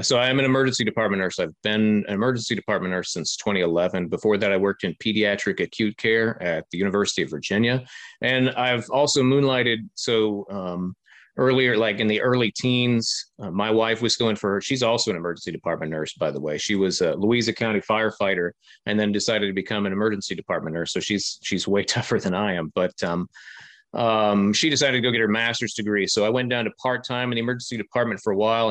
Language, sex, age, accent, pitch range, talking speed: English, male, 30-49, American, 100-125 Hz, 215 wpm